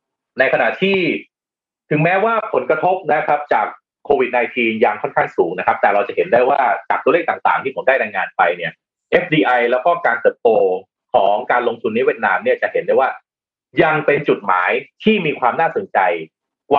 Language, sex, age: Thai, male, 30-49